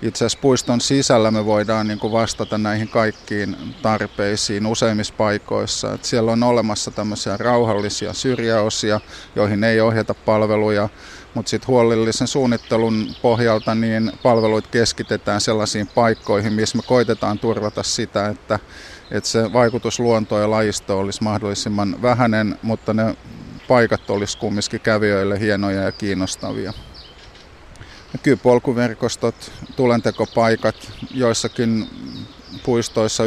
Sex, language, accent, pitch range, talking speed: male, Finnish, native, 105-115 Hz, 105 wpm